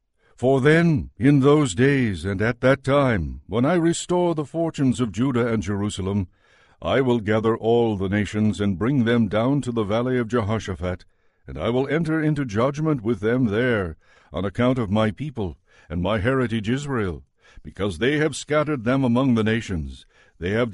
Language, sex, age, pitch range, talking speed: English, male, 60-79, 110-135 Hz, 175 wpm